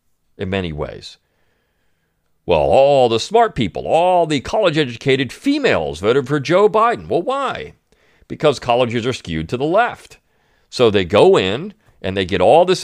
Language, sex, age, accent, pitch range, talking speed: English, male, 40-59, American, 100-165 Hz, 160 wpm